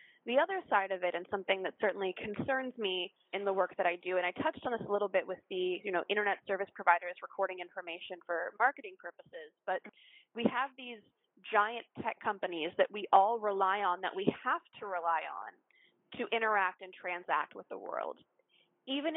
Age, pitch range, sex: 20-39, 190-240 Hz, female